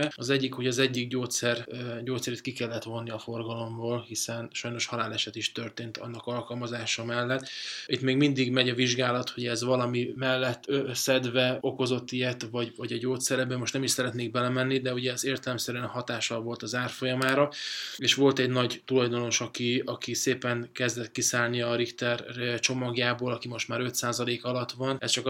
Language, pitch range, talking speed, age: Hungarian, 120-135 Hz, 170 wpm, 20-39